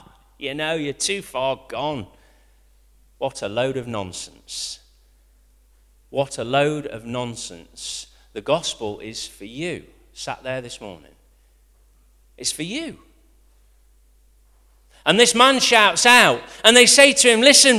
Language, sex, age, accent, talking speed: English, male, 40-59, British, 130 wpm